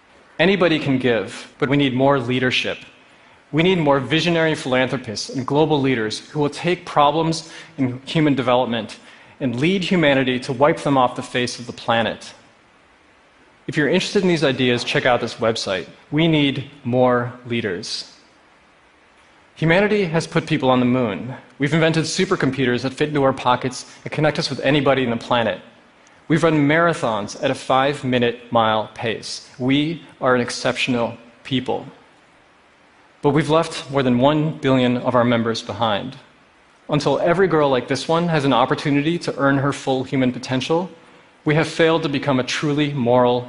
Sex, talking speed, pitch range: male, 165 wpm, 125-155 Hz